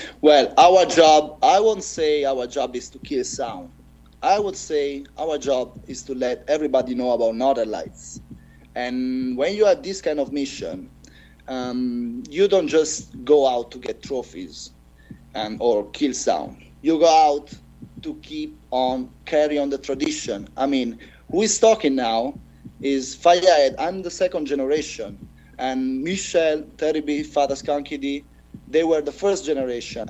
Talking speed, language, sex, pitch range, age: 155 wpm, English, male, 130-165 Hz, 30-49